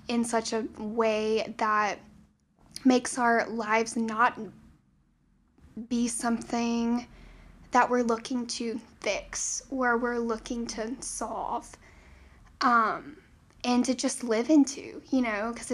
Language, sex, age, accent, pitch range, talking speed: English, female, 10-29, American, 230-255 Hz, 115 wpm